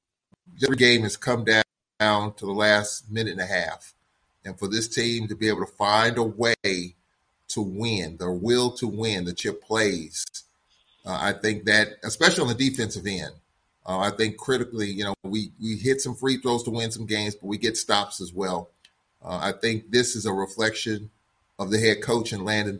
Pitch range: 105-125 Hz